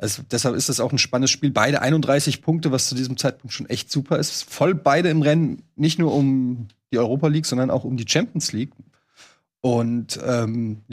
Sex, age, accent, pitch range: male, 30-49, German, 125-150 Hz